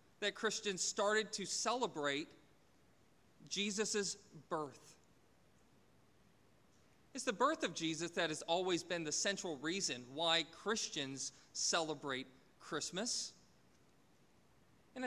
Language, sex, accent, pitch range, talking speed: English, male, American, 170-225 Hz, 95 wpm